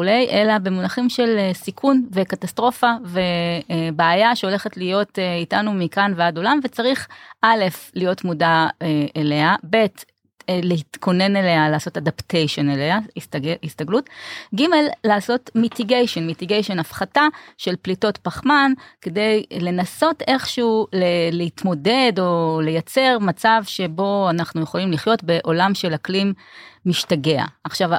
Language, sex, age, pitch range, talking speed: Hebrew, female, 30-49, 170-230 Hz, 105 wpm